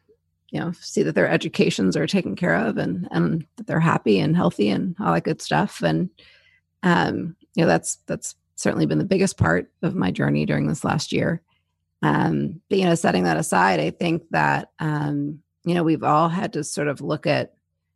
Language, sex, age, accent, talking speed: English, female, 30-49, American, 205 wpm